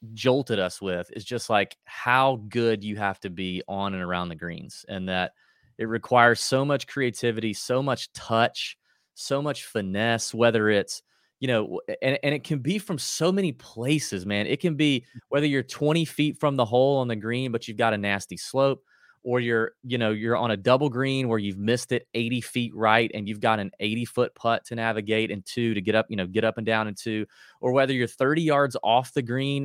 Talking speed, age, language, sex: 220 wpm, 30-49, English, male